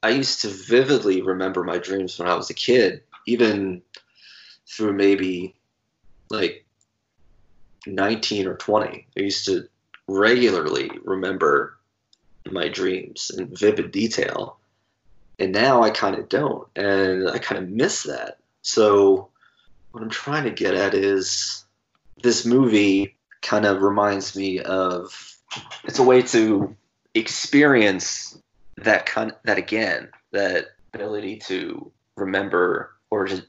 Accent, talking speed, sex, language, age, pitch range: American, 130 wpm, male, English, 30-49, 95-105 Hz